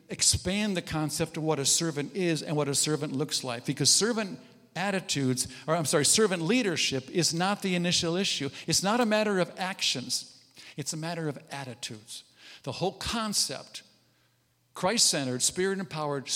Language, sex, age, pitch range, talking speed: English, male, 50-69, 140-195 Hz, 160 wpm